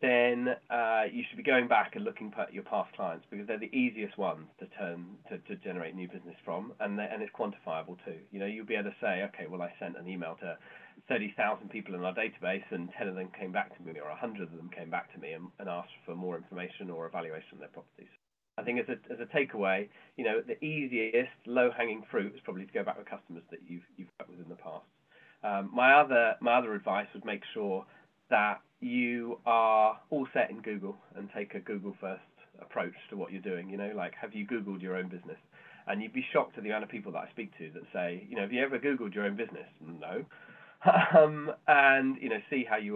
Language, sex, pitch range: English, male, 95-120 Hz